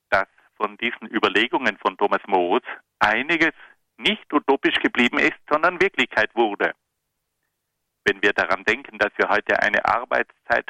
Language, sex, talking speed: German, male, 130 wpm